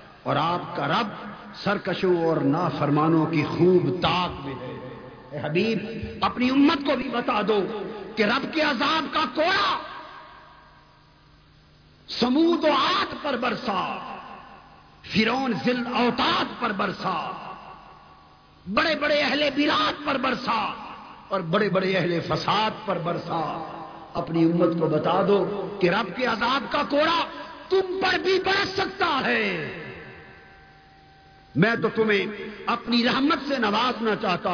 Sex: male